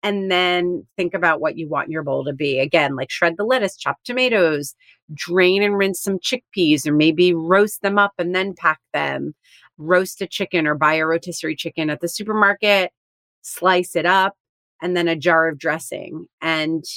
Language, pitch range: English, 155-185 Hz